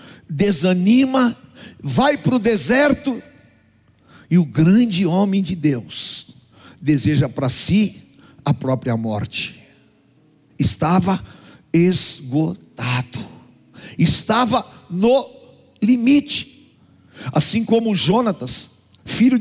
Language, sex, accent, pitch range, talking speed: Portuguese, male, Brazilian, 165-235 Hz, 85 wpm